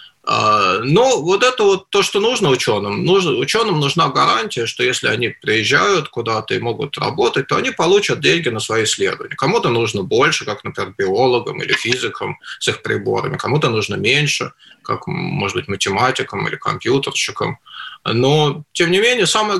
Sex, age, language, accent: male, 20-39, Russian, native